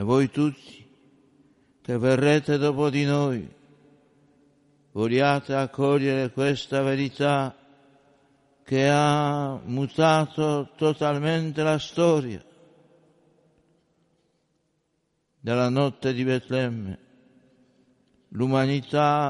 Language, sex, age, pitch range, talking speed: Italian, male, 60-79, 140-160 Hz, 70 wpm